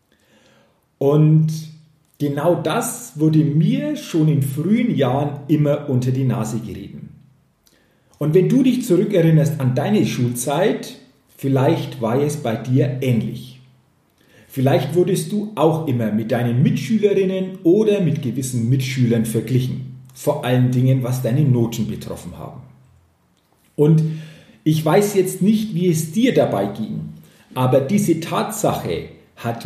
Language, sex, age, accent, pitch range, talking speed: German, male, 40-59, German, 130-175 Hz, 125 wpm